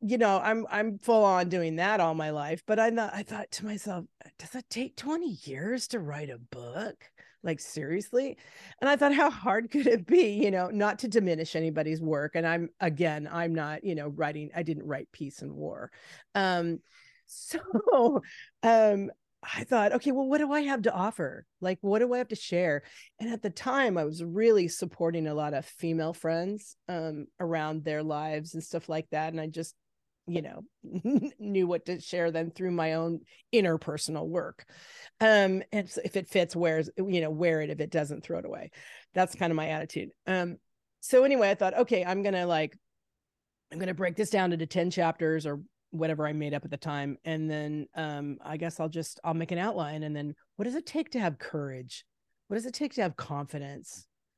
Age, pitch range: 40-59, 155-215 Hz